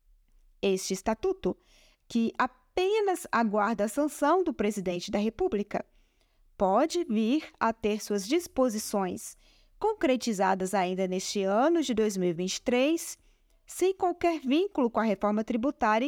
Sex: female